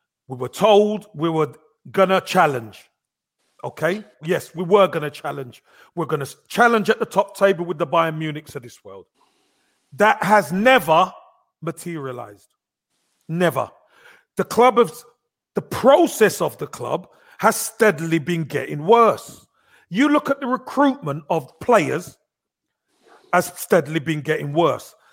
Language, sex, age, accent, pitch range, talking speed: English, male, 40-59, British, 170-230 Hz, 145 wpm